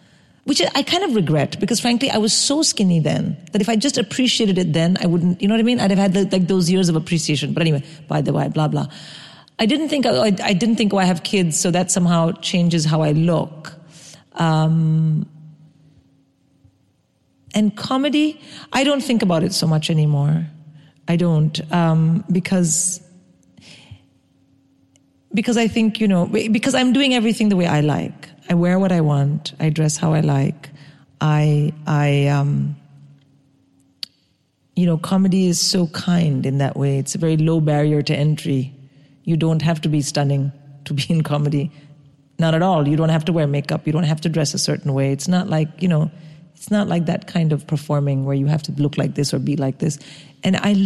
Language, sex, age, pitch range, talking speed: English, female, 40-59, 150-185 Hz, 200 wpm